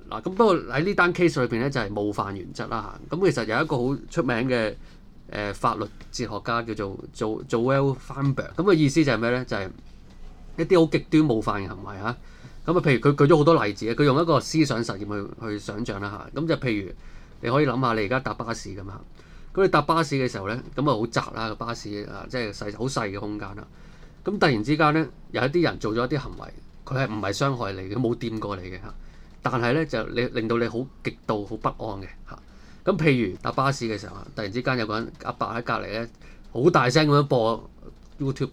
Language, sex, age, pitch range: Chinese, male, 20-39, 105-140 Hz